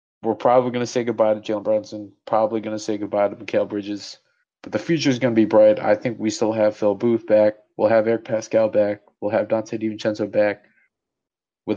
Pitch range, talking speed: 110-130 Hz, 225 wpm